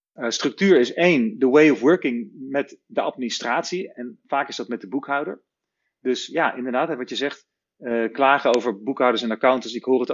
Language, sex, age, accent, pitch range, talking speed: Dutch, male, 40-59, Dutch, 115-140 Hz, 195 wpm